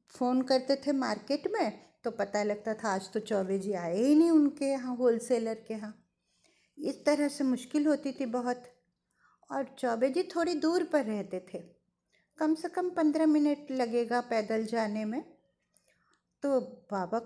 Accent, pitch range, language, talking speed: native, 230-295 Hz, Hindi, 165 wpm